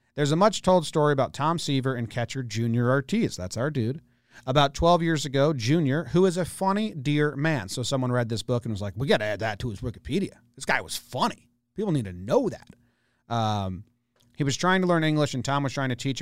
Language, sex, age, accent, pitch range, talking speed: English, male, 40-59, American, 115-145 Hz, 235 wpm